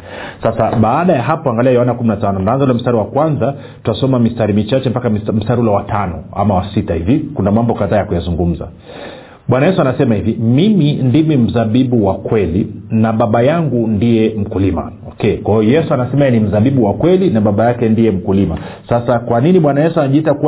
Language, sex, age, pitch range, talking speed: Swahili, male, 40-59, 105-140 Hz, 175 wpm